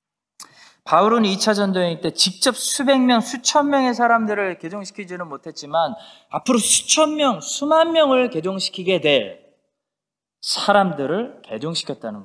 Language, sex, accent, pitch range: Korean, male, native, 160-240 Hz